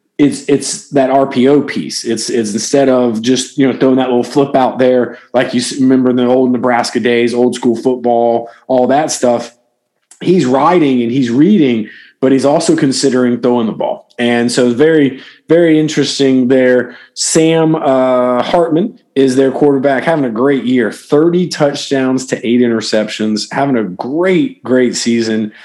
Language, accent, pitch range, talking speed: English, American, 120-150 Hz, 165 wpm